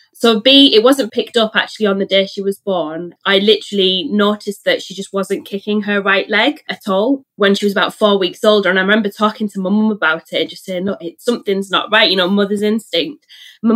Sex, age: female, 20-39